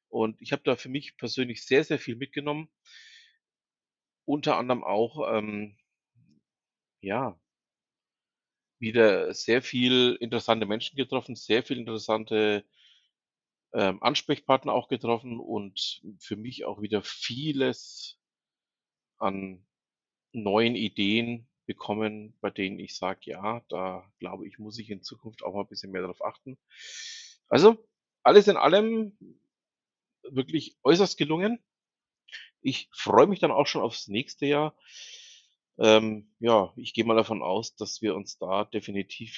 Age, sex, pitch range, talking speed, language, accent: 40-59, male, 100-135 Hz, 130 wpm, German, German